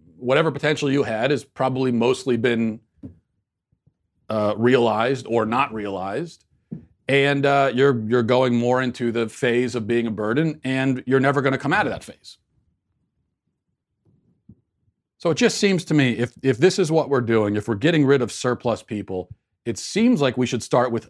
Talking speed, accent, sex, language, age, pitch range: 180 wpm, American, male, English, 40-59, 115-150 Hz